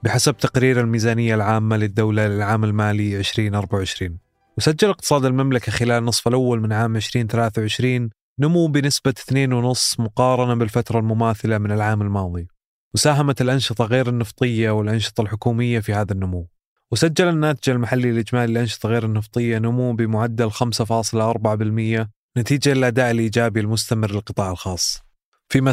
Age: 20-39